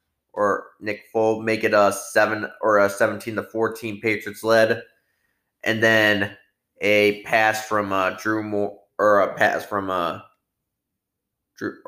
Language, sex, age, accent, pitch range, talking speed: English, male, 20-39, American, 105-115 Hz, 145 wpm